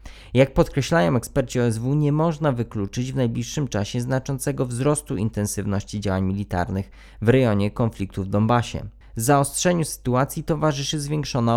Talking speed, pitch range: 130 wpm, 105-140 Hz